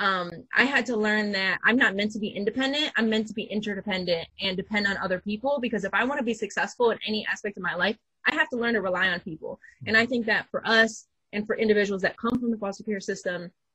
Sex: female